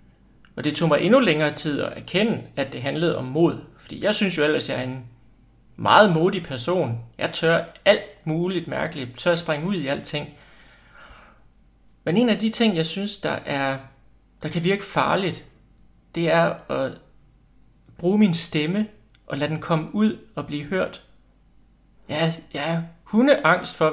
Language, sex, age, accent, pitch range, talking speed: Danish, male, 30-49, native, 140-175 Hz, 170 wpm